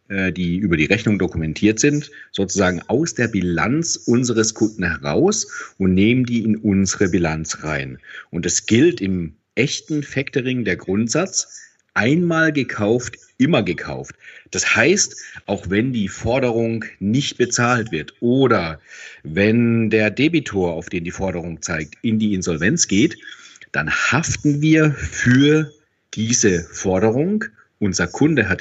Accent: German